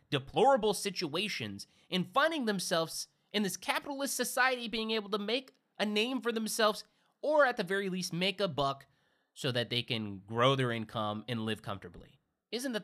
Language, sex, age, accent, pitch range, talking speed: English, male, 20-39, American, 135-205 Hz, 175 wpm